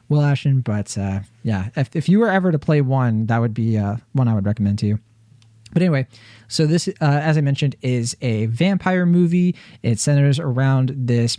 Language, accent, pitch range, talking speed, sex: English, American, 115-155 Hz, 205 wpm, male